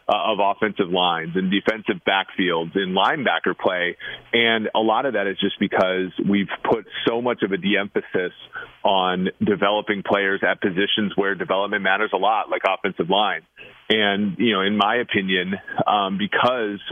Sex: male